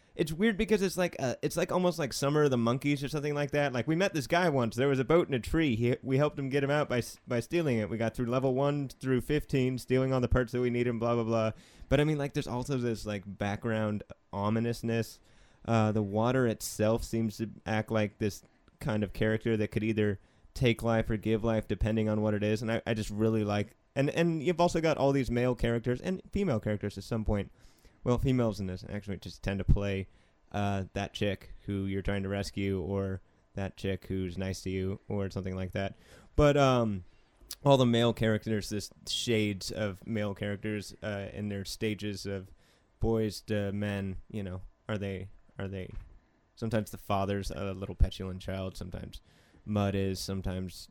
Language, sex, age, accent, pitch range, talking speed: English, male, 20-39, American, 100-125 Hz, 210 wpm